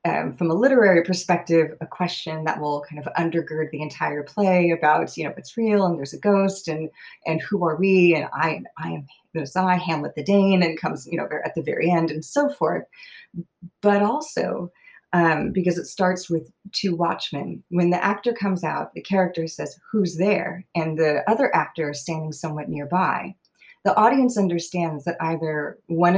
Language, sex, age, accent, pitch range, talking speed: English, female, 30-49, American, 160-200 Hz, 190 wpm